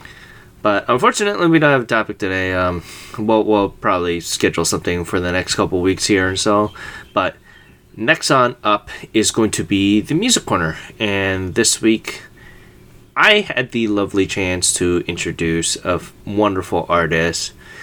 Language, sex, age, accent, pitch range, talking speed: English, male, 20-39, American, 95-130 Hz, 155 wpm